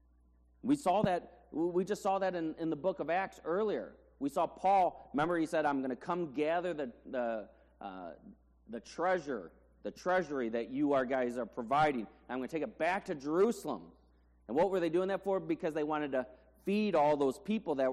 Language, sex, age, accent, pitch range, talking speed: English, male, 30-49, American, 115-170 Hz, 210 wpm